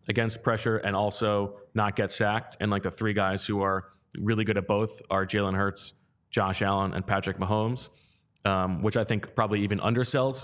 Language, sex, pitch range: English, male, 95-115 Hz